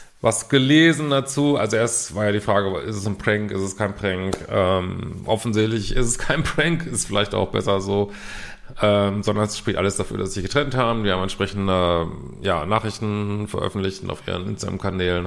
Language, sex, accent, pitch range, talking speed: German, male, German, 100-115 Hz, 190 wpm